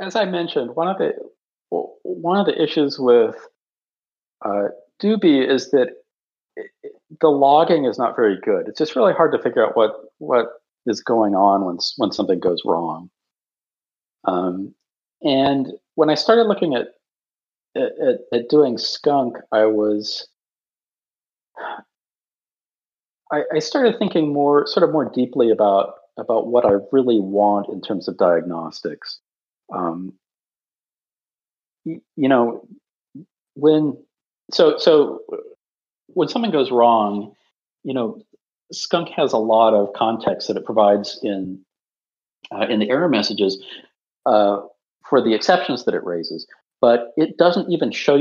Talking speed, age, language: 140 wpm, 50-69, English